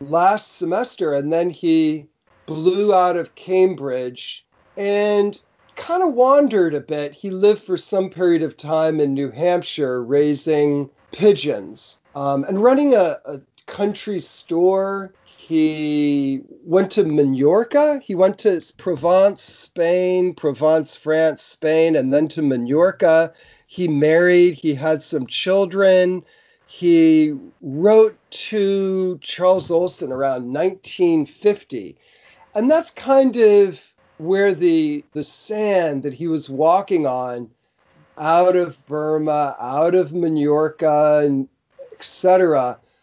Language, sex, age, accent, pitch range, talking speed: English, male, 40-59, American, 150-200 Hz, 115 wpm